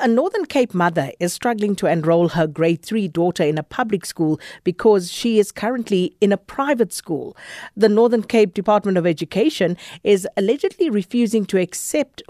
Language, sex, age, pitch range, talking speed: English, female, 50-69, 165-210 Hz, 170 wpm